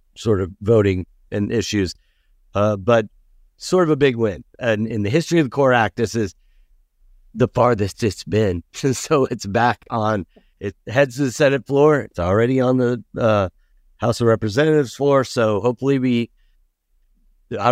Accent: American